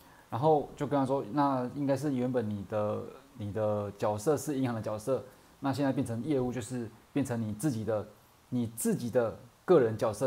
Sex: male